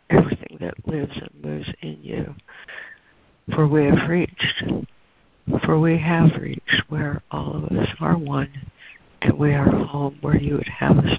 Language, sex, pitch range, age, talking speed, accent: English, female, 145-175 Hz, 60-79, 160 wpm, American